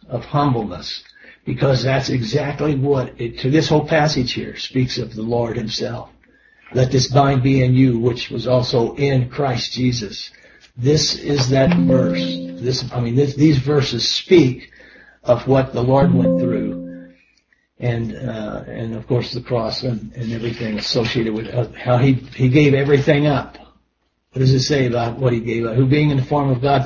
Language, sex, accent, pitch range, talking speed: English, male, American, 115-140 Hz, 180 wpm